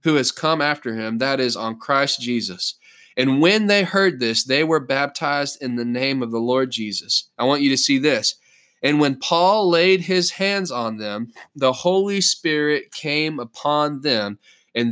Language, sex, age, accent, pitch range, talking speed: English, male, 20-39, American, 130-185 Hz, 185 wpm